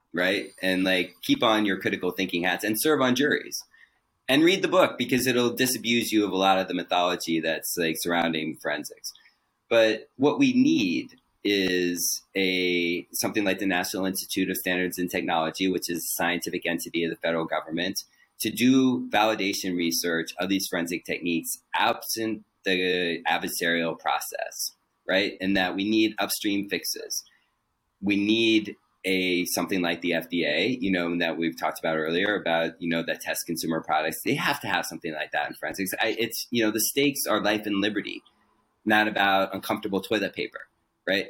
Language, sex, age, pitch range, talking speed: English, male, 30-49, 90-110 Hz, 175 wpm